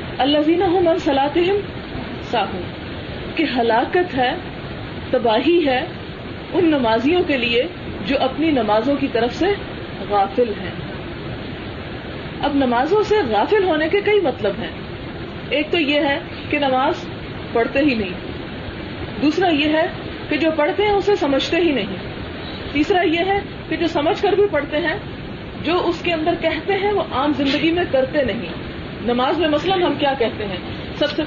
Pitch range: 240-335 Hz